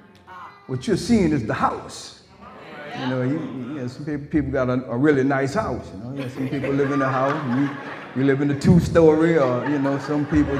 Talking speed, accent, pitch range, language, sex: 240 wpm, American, 125-160 Hz, English, male